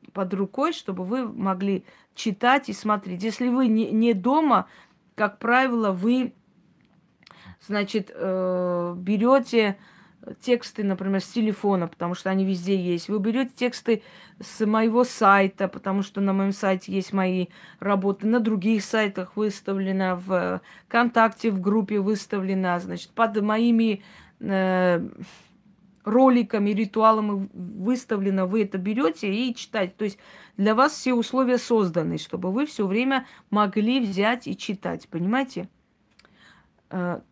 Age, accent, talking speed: 20-39, native, 125 wpm